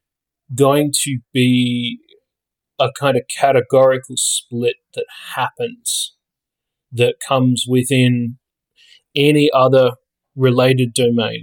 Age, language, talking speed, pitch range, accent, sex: 30-49, English, 90 wpm, 125-145 Hz, Australian, male